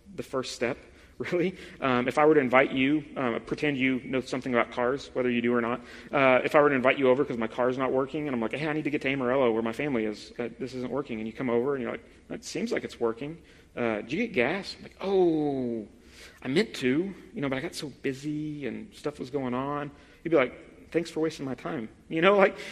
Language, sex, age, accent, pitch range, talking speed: English, male, 30-49, American, 120-150 Hz, 265 wpm